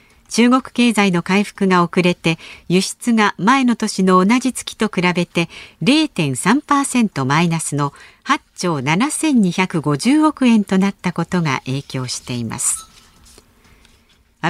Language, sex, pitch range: Japanese, female, 165-235 Hz